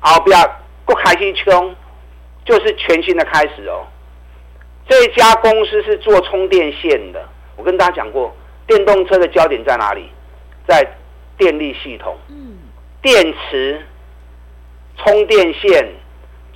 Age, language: 50-69, Chinese